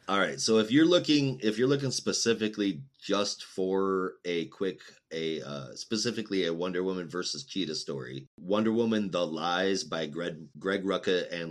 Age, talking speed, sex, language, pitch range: 30-49, 165 wpm, male, English, 85-110 Hz